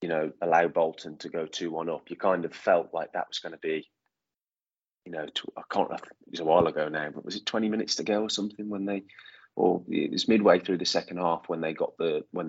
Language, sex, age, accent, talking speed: English, male, 20-39, British, 250 wpm